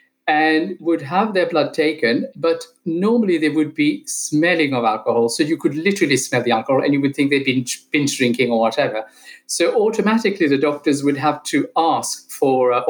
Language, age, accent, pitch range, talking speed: English, 50-69, British, 140-235 Hz, 190 wpm